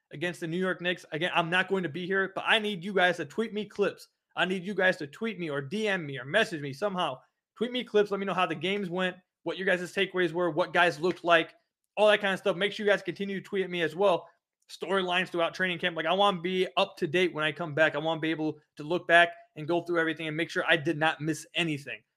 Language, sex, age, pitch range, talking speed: English, male, 20-39, 160-185 Hz, 285 wpm